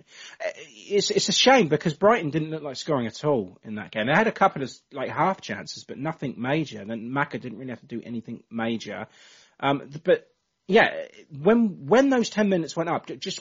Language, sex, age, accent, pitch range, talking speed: English, male, 30-49, British, 120-180 Hz, 205 wpm